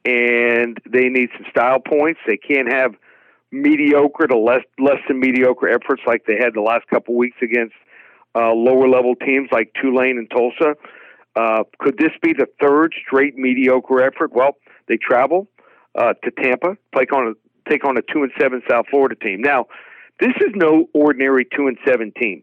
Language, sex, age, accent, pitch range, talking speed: English, male, 50-69, American, 125-150 Hz, 175 wpm